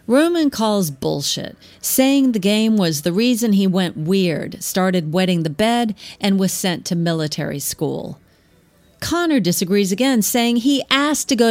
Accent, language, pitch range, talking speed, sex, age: American, English, 165-225 Hz, 155 wpm, female, 40-59